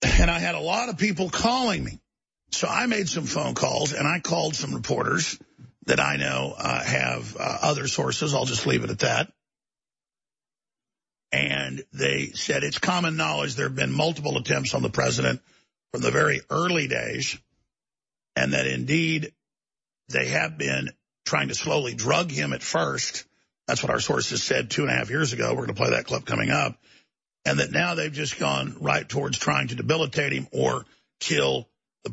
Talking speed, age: 185 wpm, 50-69